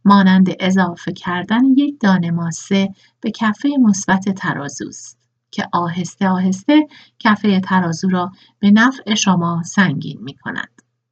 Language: Persian